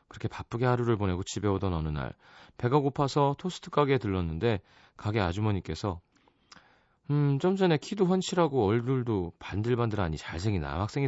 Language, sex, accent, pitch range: Korean, male, native, 95-140 Hz